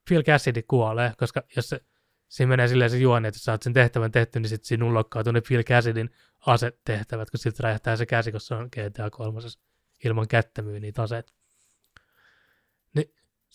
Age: 20-39